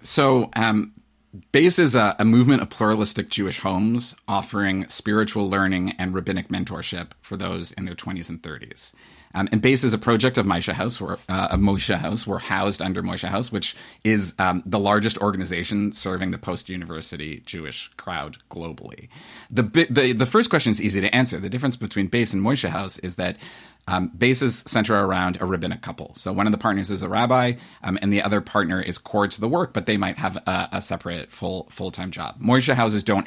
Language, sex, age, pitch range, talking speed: English, male, 30-49, 95-115 Hz, 200 wpm